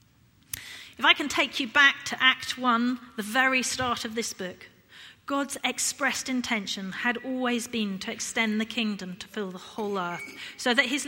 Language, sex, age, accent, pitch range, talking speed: English, female, 40-59, British, 195-260 Hz, 180 wpm